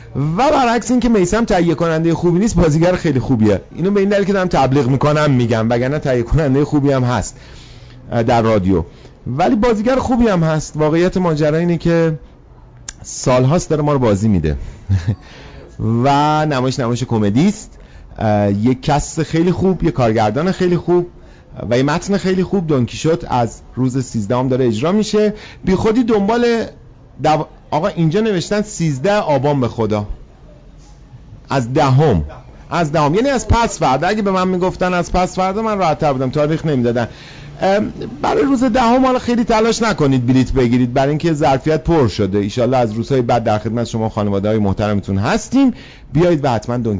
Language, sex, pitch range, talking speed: Persian, male, 115-175 Hz, 170 wpm